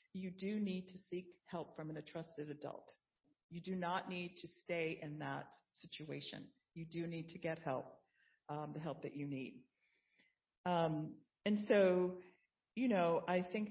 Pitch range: 160-190 Hz